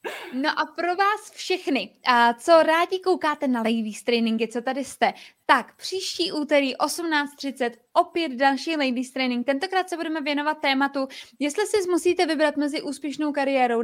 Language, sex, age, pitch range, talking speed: Czech, female, 20-39, 250-310 Hz, 150 wpm